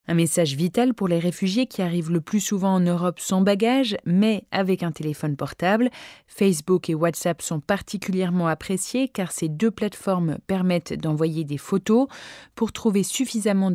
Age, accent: 20-39, French